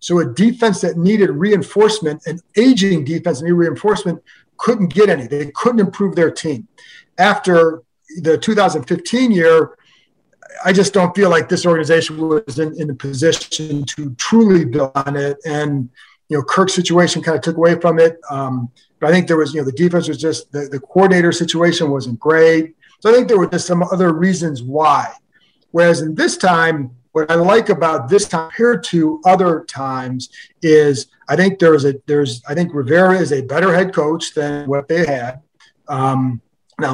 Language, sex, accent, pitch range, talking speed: English, male, American, 145-185 Hz, 185 wpm